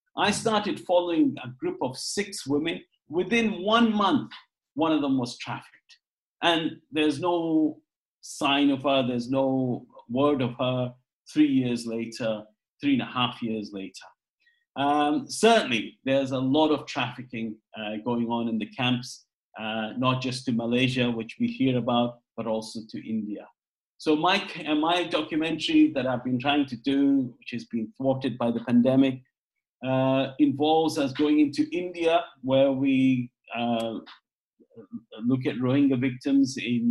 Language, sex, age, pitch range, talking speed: English, male, 50-69, 125-170 Hz, 150 wpm